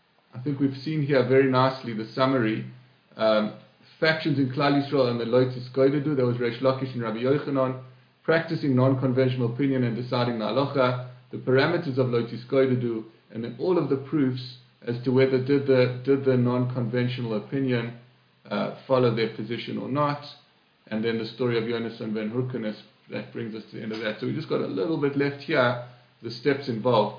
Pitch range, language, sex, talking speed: 115-135 Hz, English, male, 185 wpm